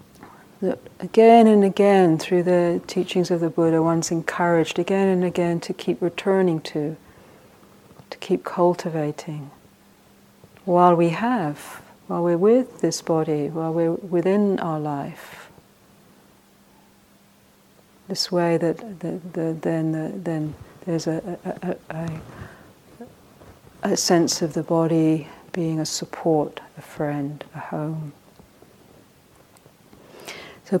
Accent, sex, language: British, female, English